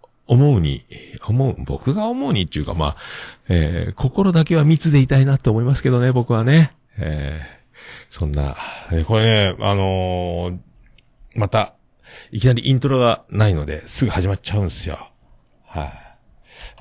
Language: Japanese